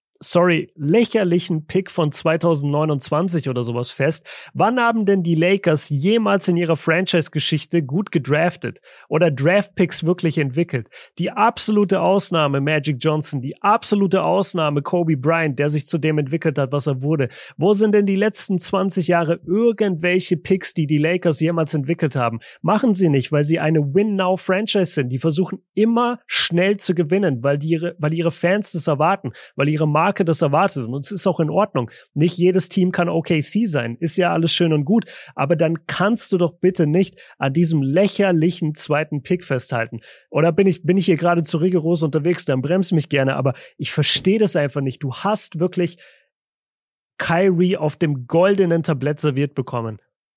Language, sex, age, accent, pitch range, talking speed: German, male, 30-49, German, 150-185 Hz, 170 wpm